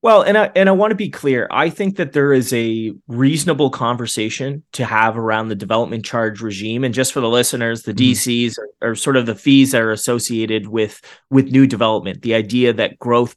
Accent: American